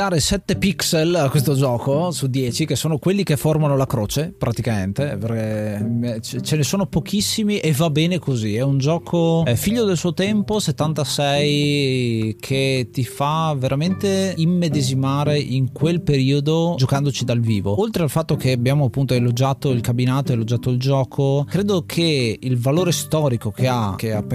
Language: Italian